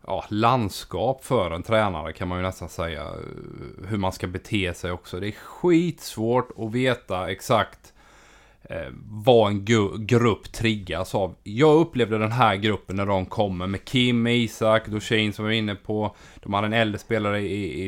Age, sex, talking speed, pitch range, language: 30-49, male, 170 wpm, 95-115 Hz, Swedish